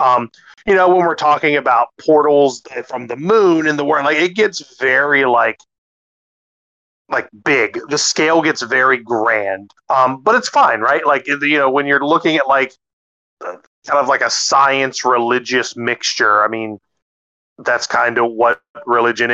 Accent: American